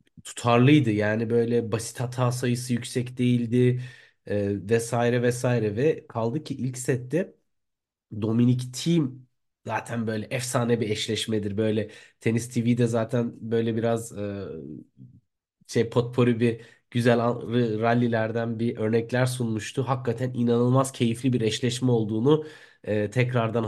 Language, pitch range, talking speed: Turkish, 115-130 Hz, 115 wpm